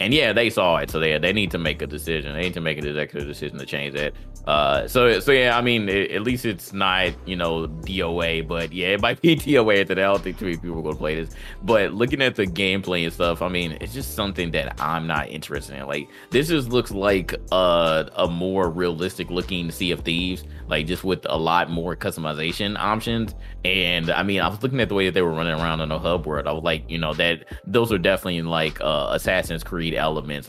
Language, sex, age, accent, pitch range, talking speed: English, male, 20-39, American, 80-95 Hz, 250 wpm